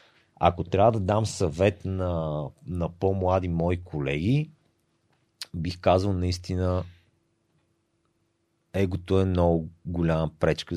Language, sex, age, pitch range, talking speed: Bulgarian, male, 40-59, 80-95 Hz, 100 wpm